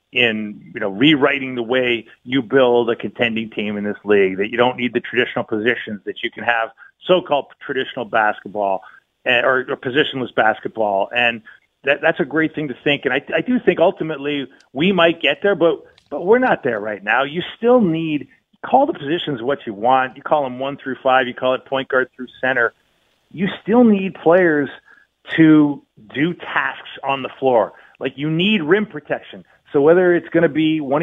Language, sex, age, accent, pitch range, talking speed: English, male, 40-59, American, 120-155 Hz, 200 wpm